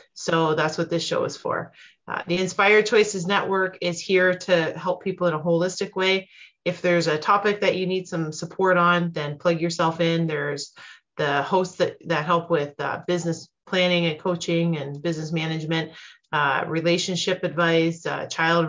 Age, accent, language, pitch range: 30-49, American, English, 165-185 Hz